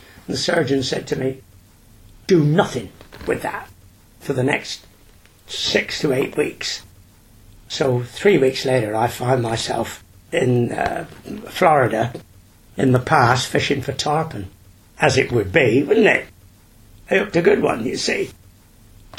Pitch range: 100-135 Hz